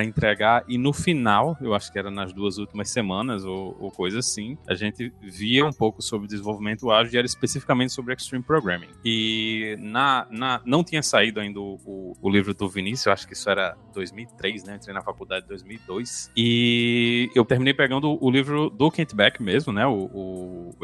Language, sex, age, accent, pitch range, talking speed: Portuguese, male, 20-39, Brazilian, 105-135 Hz, 205 wpm